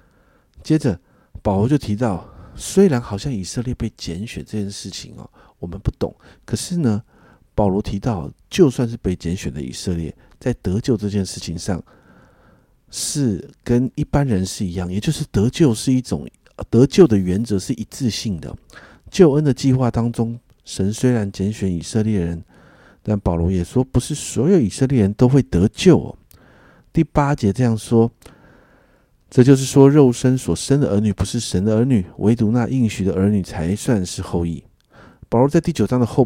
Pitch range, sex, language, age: 95-125 Hz, male, Chinese, 50-69